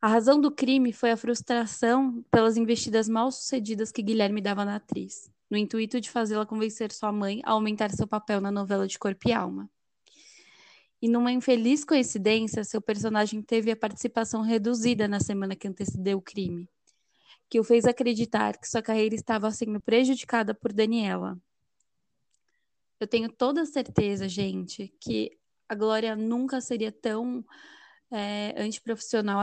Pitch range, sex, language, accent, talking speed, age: 210-245 Hz, female, Portuguese, Brazilian, 145 wpm, 10-29